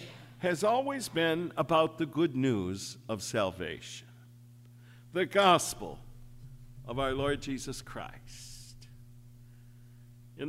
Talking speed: 95 wpm